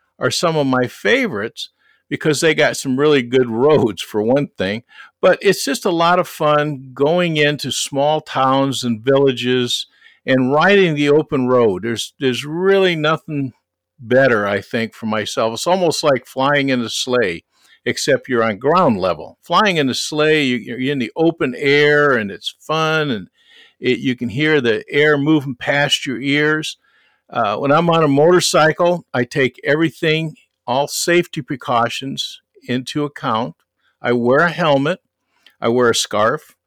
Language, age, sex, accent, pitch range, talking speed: English, 50-69, male, American, 125-155 Hz, 160 wpm